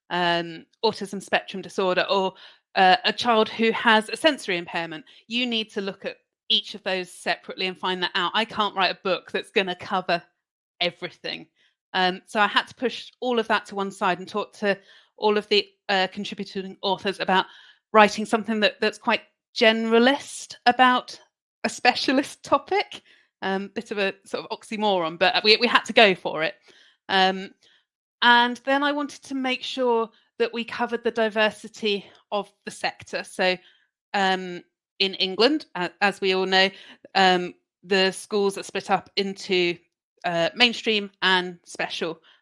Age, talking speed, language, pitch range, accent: 30-49, 165 wpm, English, 185-225 Hz, British